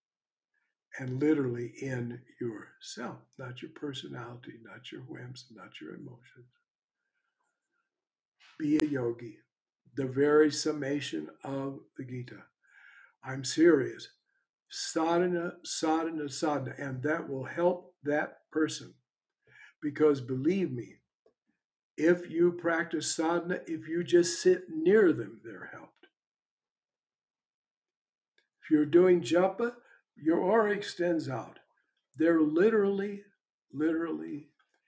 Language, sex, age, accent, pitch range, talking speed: English, male, 60-79, American, 145-200 Hz, 100 wpm